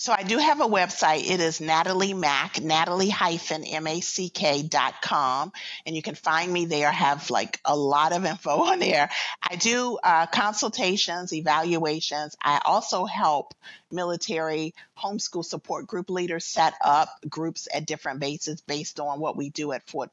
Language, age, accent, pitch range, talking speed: English, 50-69, American, 145-185 Hz, 160 wpm